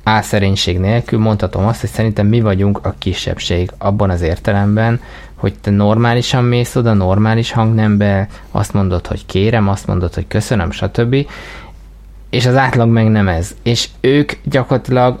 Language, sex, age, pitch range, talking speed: Hungarian, male, 20-39, 95-115 Hz, 150 wpm